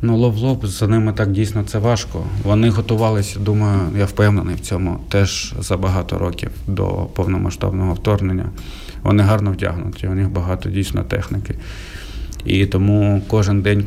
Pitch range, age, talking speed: 95-105 Hz, 20-39, 145 wpm